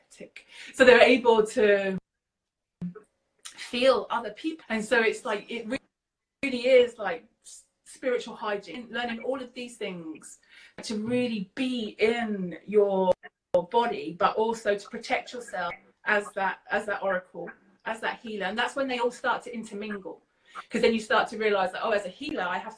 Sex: female